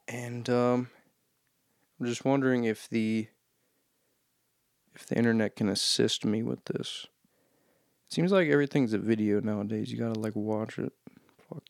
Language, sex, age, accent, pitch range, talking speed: English, male, 20-39, American, 110-130 Hz, 140 wpm